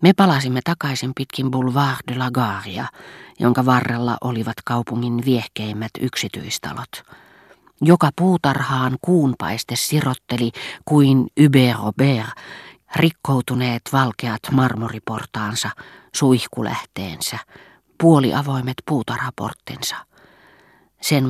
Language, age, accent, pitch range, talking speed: Finnish, 40-59, native, 115-140 Hz, 75 wpm